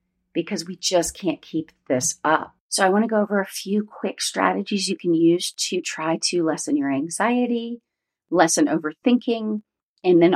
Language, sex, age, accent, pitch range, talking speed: English, female, 40-59, American, 170-220 Hz, 175 wpm